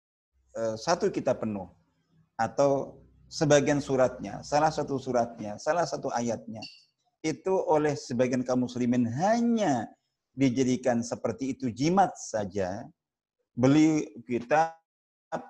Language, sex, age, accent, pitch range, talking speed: Indonesian, male, 50-69, native, 120-155 Hz, 95 wpm